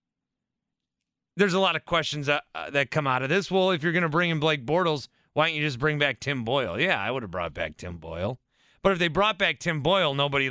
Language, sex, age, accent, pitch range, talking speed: English, male, 30-49, American, 140-195 Hz, 255 wpm